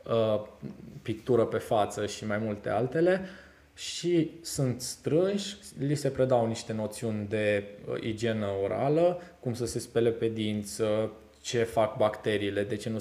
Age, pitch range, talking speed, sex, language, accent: 20-39, 105-135 Hz, 140 wpm, male, Romanian, native